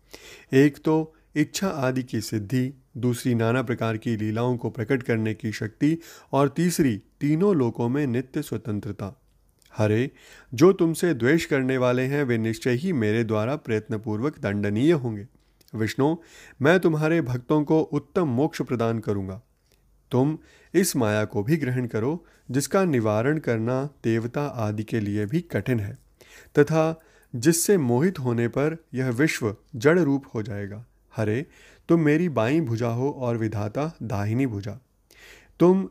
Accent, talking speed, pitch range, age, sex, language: native, 145 wpm, 115-150 Hz, 30-49, male, Hindi